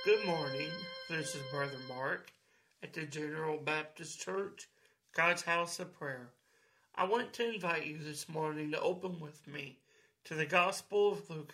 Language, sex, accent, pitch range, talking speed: English, male, American, 150-190 Hz, 160 wpm